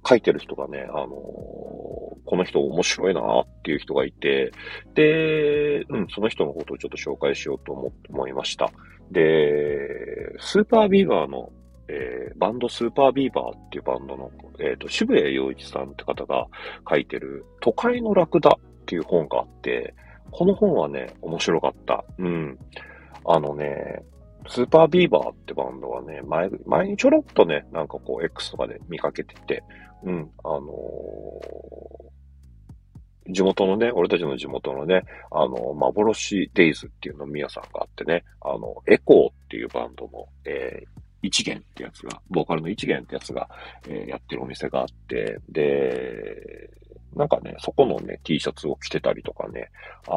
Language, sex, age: Japanese, male, 40-59